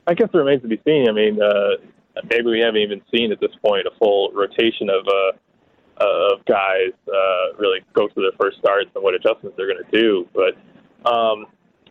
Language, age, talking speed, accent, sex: English, 20-39, 210 wpm, American, male